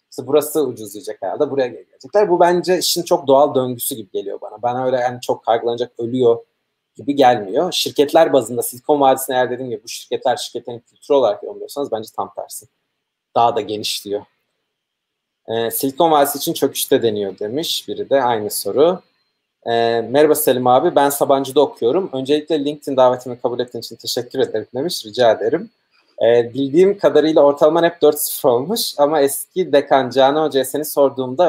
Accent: native